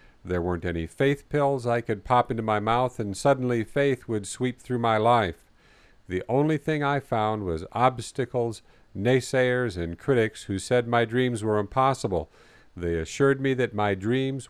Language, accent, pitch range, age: English, American, 100-130 Hz, 50-69